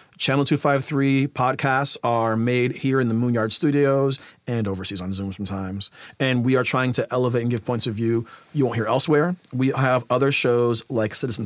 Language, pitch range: English, 115-140 Hz